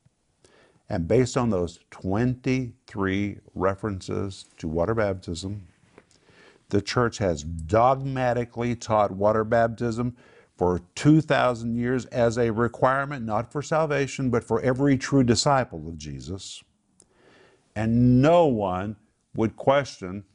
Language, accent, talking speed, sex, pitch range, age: English, American, 110 wpm, male, 90-120 Hz, 50-69